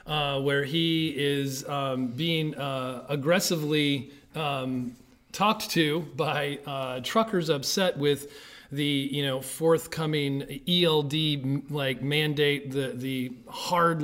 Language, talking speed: English, 110 wpm